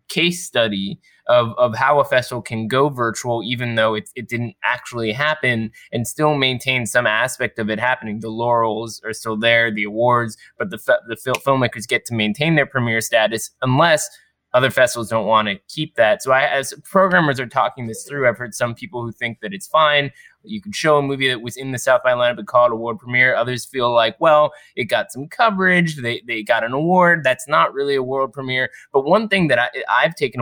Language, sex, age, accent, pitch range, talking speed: English, male, 20-39, American, 115-145 Hz, 225 wpm